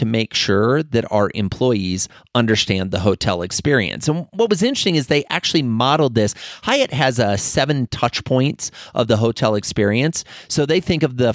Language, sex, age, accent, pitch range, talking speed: English, male, 30-49, American, 105-140 Hz, 170 wpm